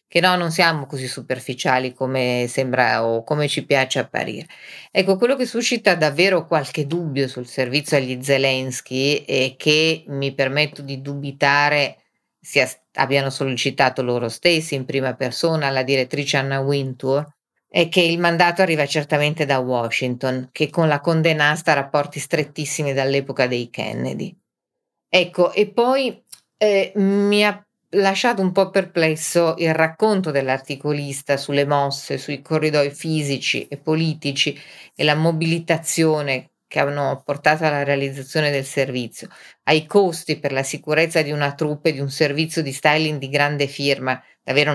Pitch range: 135-165 Hz